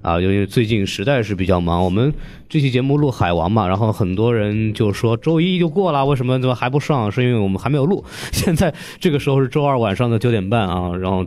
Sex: male